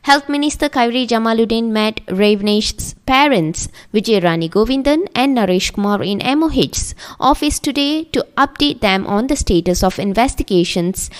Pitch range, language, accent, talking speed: 200-270 Hz, English, Indian, 135 wpm